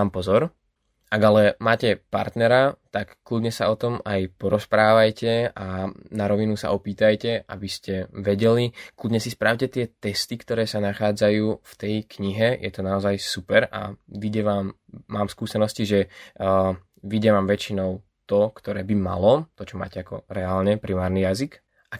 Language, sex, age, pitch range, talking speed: Slovak, male, 20-39, 100-110 Hz, 150 wpm